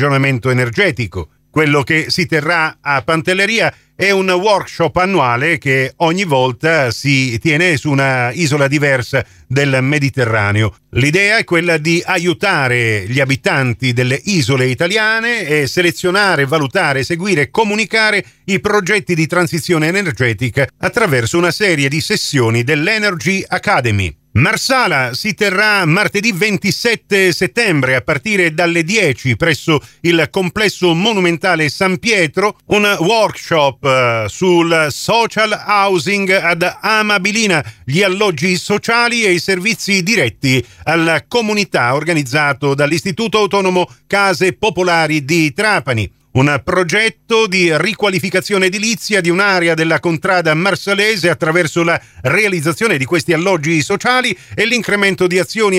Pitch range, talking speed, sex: 140-195 Hz, 120 wpm, male